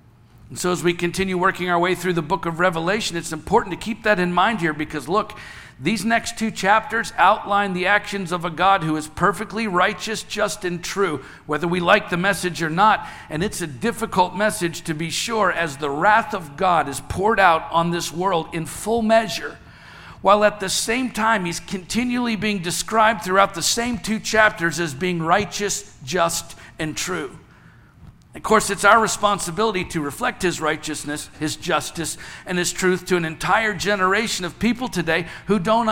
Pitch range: 170-215 Hz